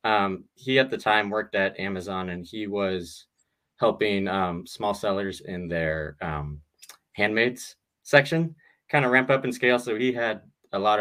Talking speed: 170 wpm